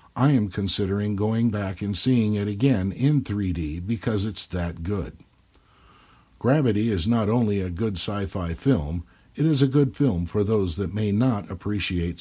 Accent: American